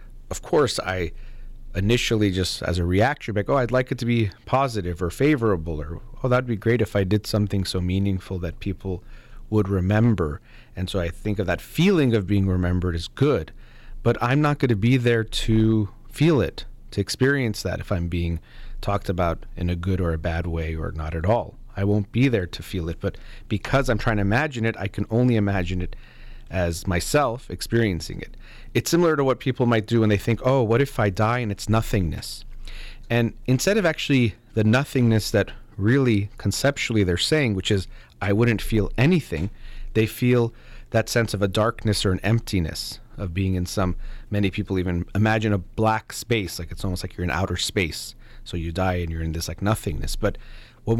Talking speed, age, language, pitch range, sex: 200 wpm, 30-49, English, 95-120 Hz, male